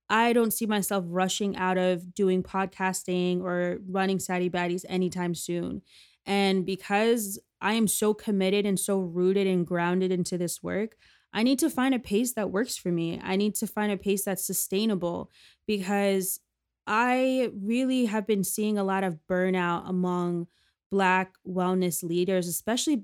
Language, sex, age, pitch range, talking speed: English, female, 20-39, 180-210 Hz, 160 wpm